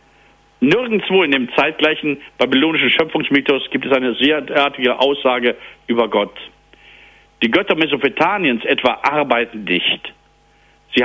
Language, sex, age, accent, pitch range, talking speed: German, male, 60-79, German, 125-160 Hz, 115 wpm